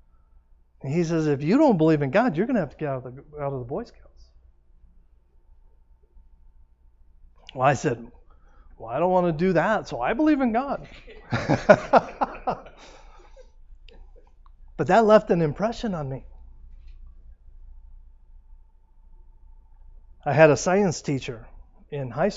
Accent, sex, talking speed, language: American, male, 130 wpm, English